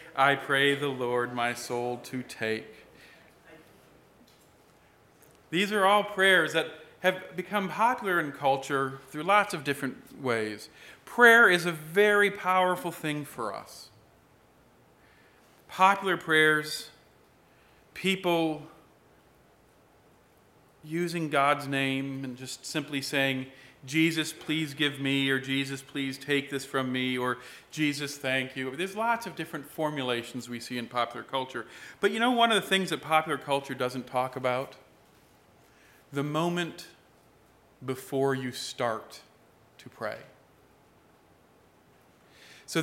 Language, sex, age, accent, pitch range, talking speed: English, male, 40-59, American, 130-170 Hz, 120 wpm